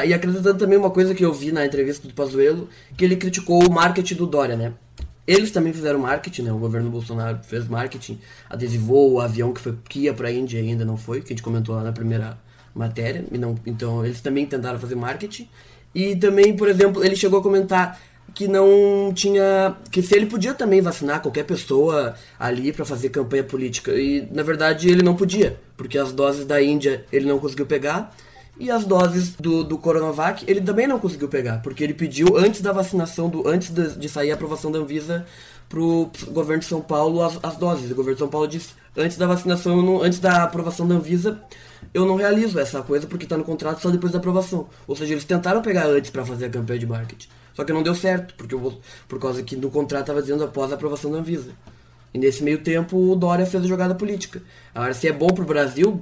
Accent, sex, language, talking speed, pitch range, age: Brazilian, male, Portuguese, 220 wpm, 130-180 Hz, 20-39